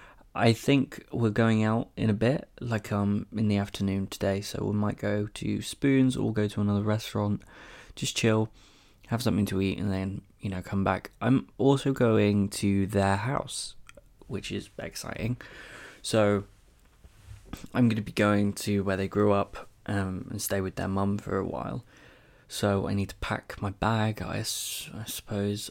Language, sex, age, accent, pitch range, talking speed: English, male, 20-39, British, 100-115 Hz, 175 wpm